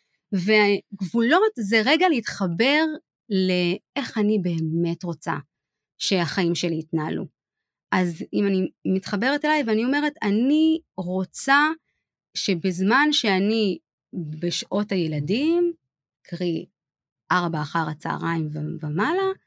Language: Hebrew